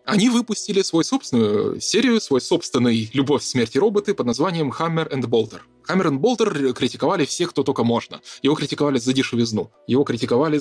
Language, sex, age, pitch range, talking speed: Russian, male, 20-39, 120-155 Hz, 170 wpm